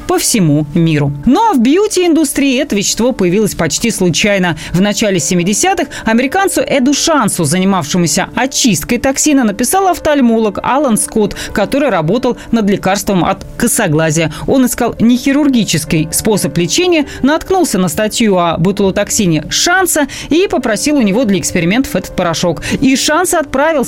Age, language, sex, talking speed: 20-39, Russian, female, 140 wpm